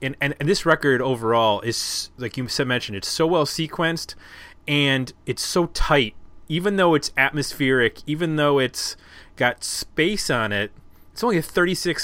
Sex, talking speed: male, 170 wpm